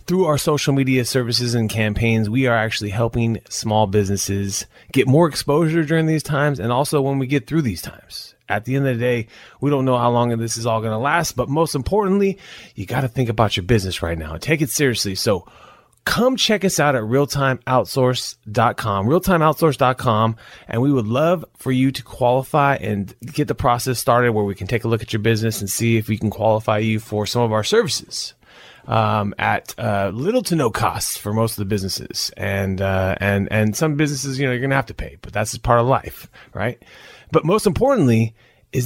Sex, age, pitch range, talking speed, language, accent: male, 20-39, 105-140 Hz, 215 wpm, English, American